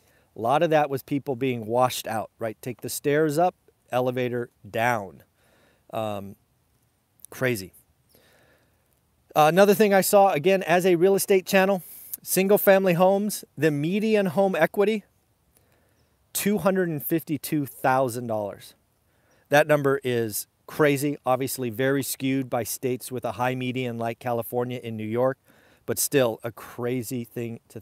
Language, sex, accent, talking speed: English, male, American, 130 wpm